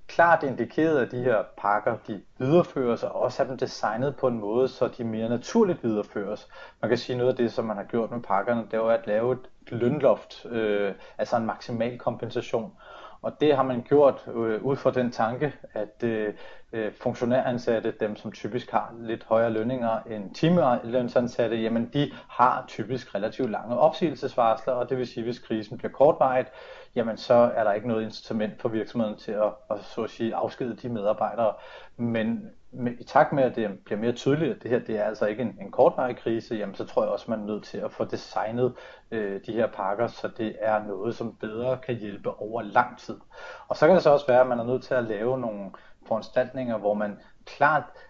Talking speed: 205 wpm